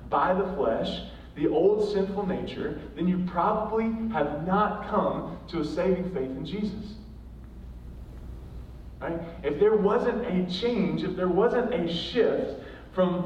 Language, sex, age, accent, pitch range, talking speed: English, male, 20-39, American, 140-200 Hz, 140 wpm